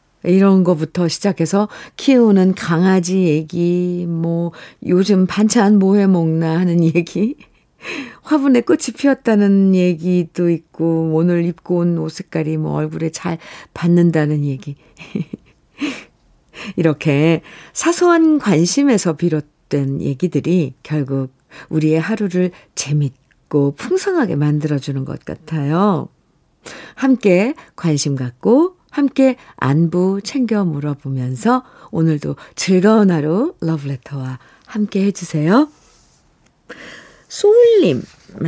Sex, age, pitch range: female, 50-69, 160-230 Hz